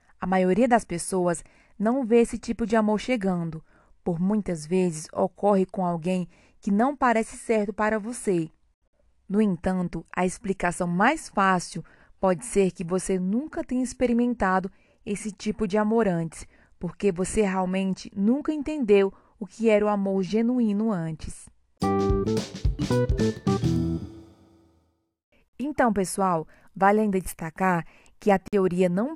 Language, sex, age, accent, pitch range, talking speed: Portuguese, female, 20-39, Brazilian, 185-225 Hz, 130 wpm